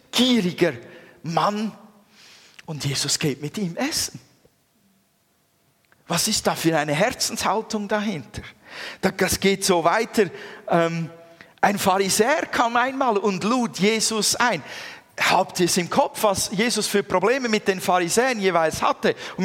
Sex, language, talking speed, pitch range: male, German, 130 wpm, 160-210 Hz